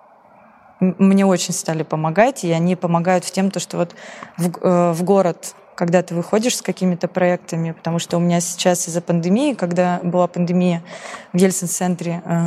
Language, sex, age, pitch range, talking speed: Russian, female, 20-39, 175-195 Hz, 160 wpm